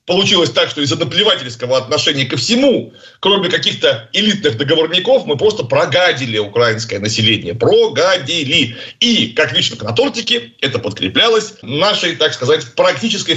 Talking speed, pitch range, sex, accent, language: 130 wpm, 135-215 Hz, male, native, Russian